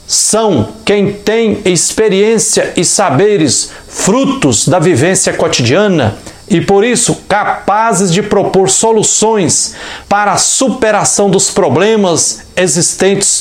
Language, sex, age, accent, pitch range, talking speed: Portuguese, male, 60-79, Brazilian, 150-205 Hz, 105 wpm